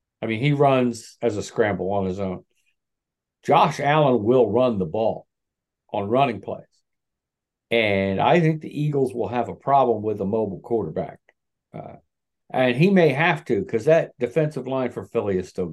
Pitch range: 105-135 Hz